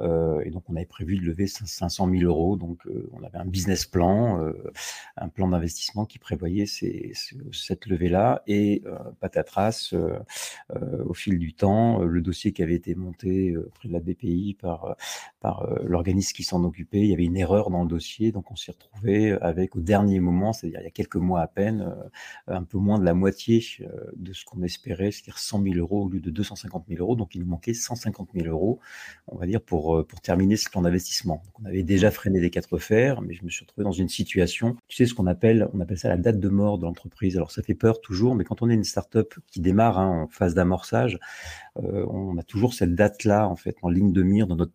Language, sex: French, male